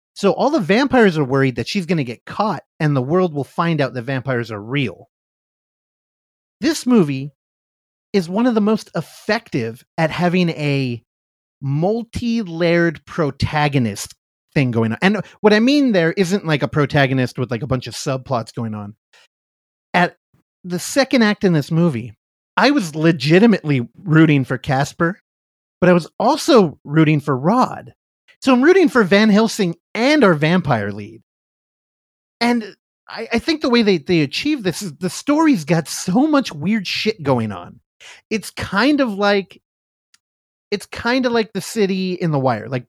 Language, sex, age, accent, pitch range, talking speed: English, male, 30-49, American, 135-210 Hz, 165 wpm